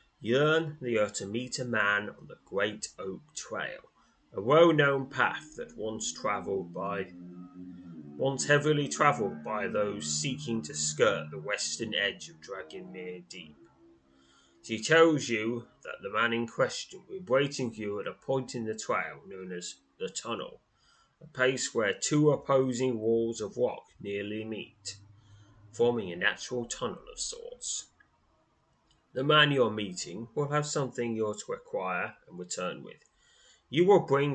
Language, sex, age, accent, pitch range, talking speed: English, male, 20-39, British, 100-135 Hz, 155 wpm